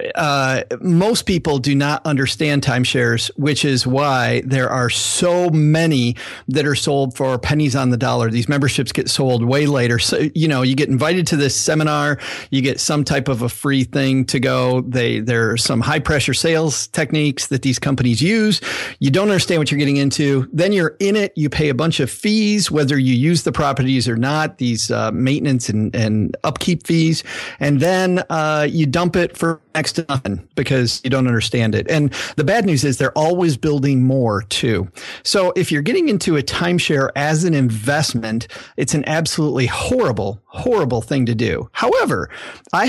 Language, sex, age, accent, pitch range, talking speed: English, male, 40-59, American, 130-160 Hz, 185 wpm